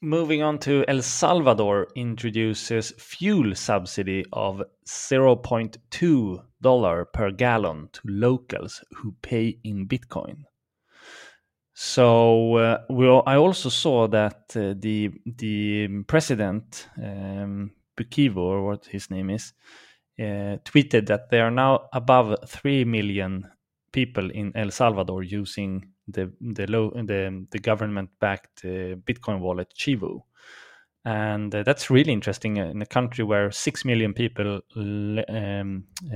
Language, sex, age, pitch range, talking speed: English, male, 20-39, 100-125 Hz, 125 wpm